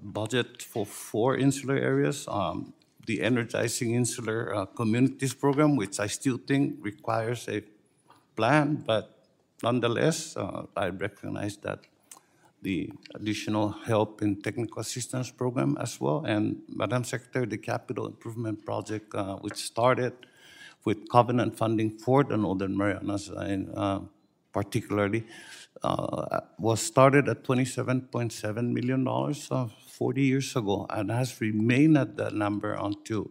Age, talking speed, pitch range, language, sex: 60-79, 130 wpm, 105-130 Hz, English, male